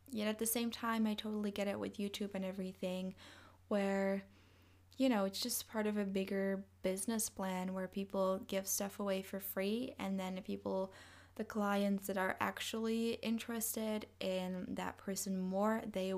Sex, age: female, 10-29